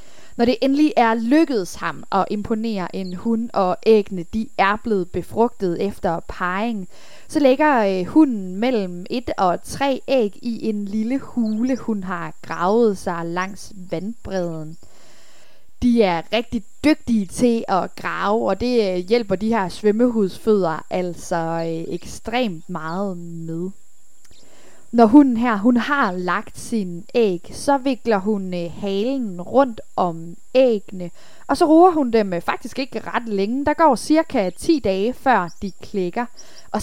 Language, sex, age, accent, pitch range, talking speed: Danish, female, 20-39, native, 180-245 Hz, 145 wpm